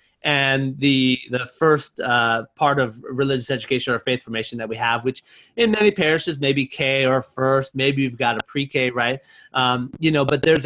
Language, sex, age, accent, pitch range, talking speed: English, male, 30-49, American, 125-155 Hz, 190 wpm